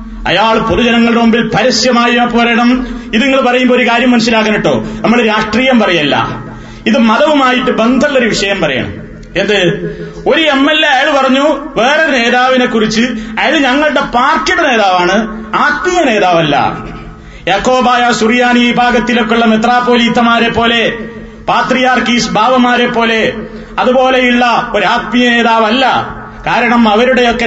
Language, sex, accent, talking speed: Malayalam, male, native, 105 wpm